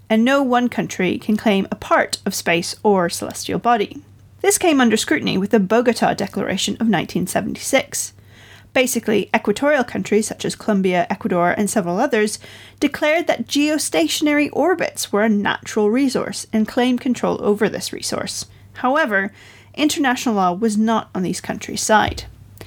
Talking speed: 150 wpm